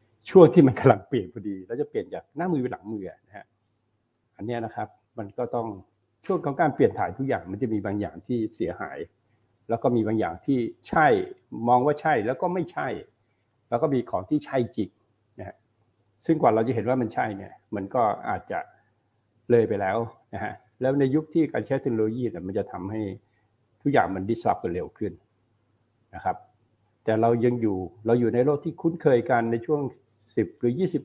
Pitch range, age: 110-130 Hz, 60-79